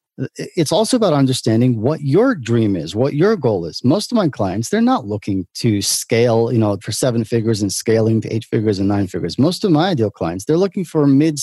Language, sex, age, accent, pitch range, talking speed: English, male, 40-59, American, 110-145 Hz, 225 wpm